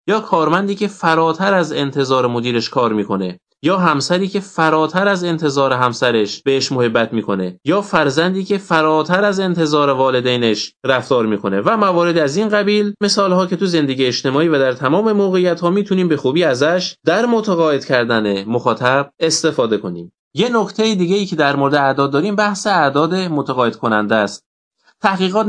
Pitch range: 130-190 Hz